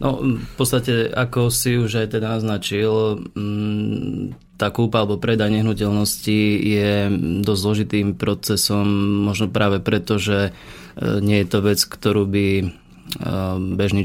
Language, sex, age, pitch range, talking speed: Slovak, male, 20-39, 95-105 Hz, 125 wpm